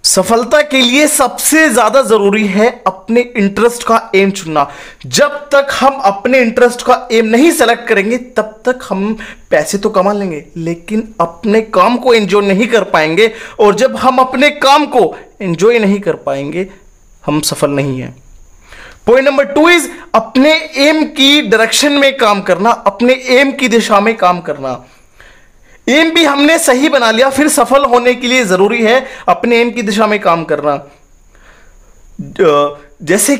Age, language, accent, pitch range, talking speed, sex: 30-49, Hindi, native, 200-265 Hz, 160 wpm, male